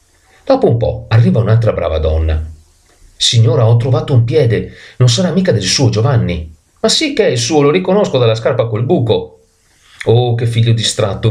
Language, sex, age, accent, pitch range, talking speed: Italian, male, 40-59, native, 85-115 Hz, 180 wpm